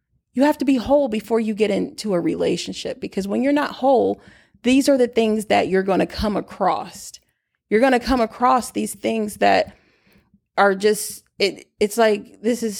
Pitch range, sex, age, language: 195-255 Hz, female, 30-49, English